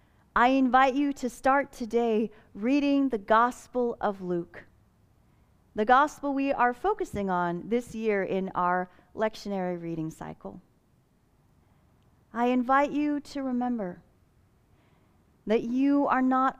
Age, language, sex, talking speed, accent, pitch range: 40-59, English, female, 120 wpm, American, 160-250 Hz